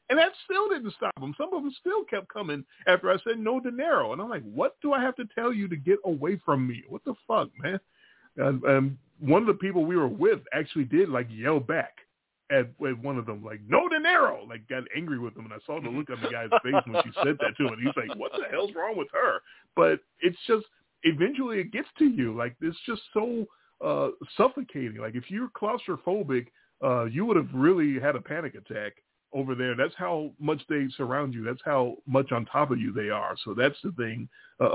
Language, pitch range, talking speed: English, 125-200 Hz, 235 wpm